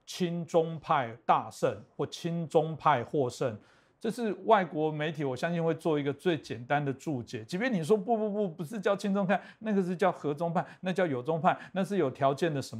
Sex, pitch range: male, 125-160 Hz